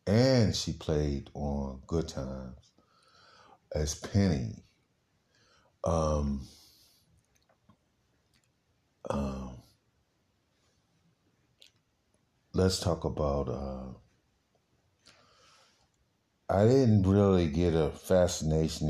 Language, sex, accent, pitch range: English, male, American, 75-90 Hz